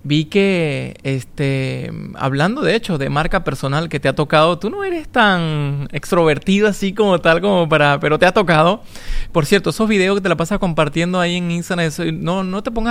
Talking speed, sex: 200 wpm, male